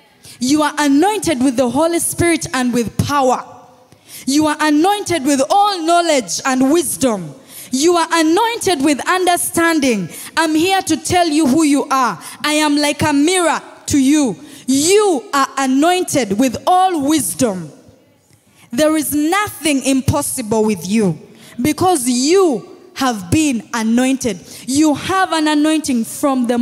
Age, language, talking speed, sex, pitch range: 20-39, English, 140 wpm, female, 245-330 Hz